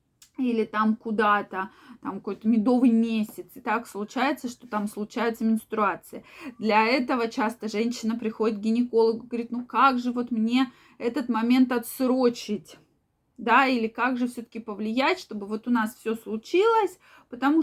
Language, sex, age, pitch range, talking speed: Russian, female, 20-39, 220-270 Hz, 145 wpm